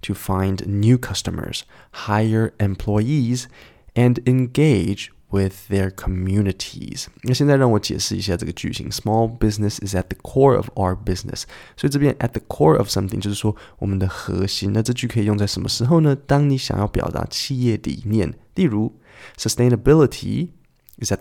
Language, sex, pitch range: Chinese, male, 95-120 Hz